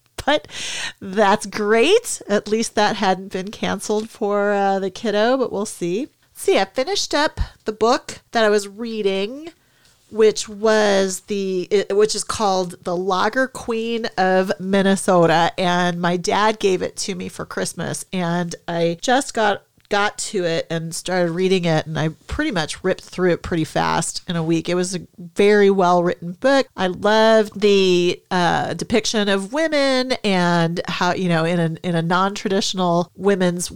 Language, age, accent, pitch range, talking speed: English, 40-59, American, 170-210 Hz, 160 wpm